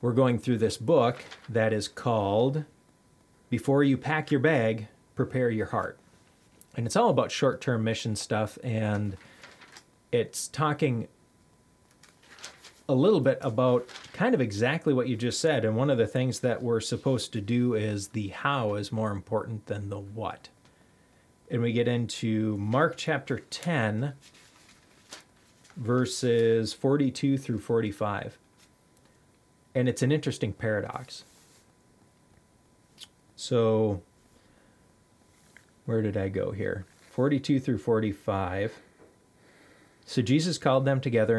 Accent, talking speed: American, 125 wpm